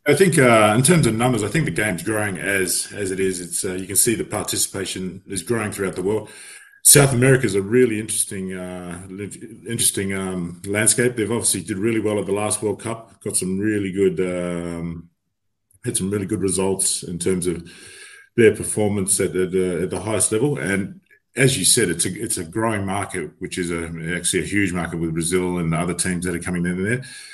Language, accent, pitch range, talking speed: English, Australian, 90-110 Hz, 215 wpm